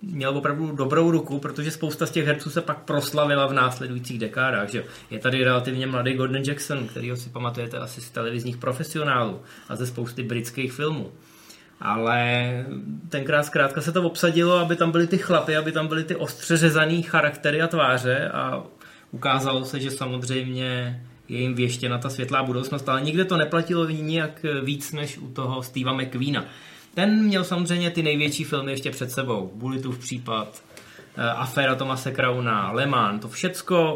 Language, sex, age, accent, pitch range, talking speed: Czech, male, 20-39, native, 130-165 Hz, 165 wpm